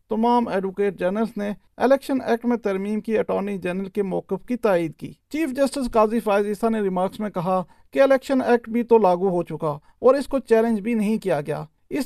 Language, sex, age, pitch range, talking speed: Urdu, male, 40-59, 195-235 Hz, 200 wpm